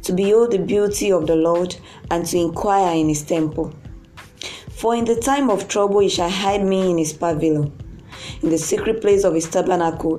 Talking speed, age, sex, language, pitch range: 195 wpm, 20-39, female, English, 160-205 Hz